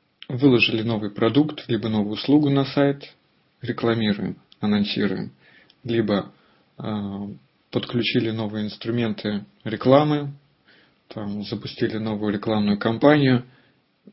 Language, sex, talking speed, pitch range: Russian, male, 85 wpm, 105-135 Hz